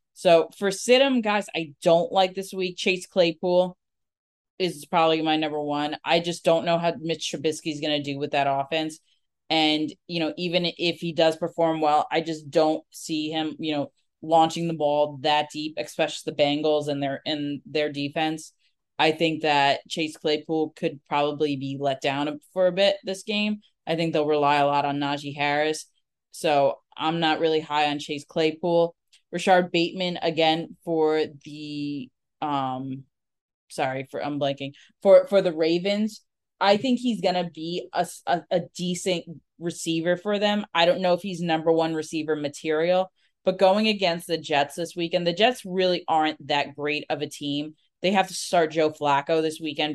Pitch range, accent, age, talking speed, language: 150-175 Hz, American, 20-39, 180 wpm, English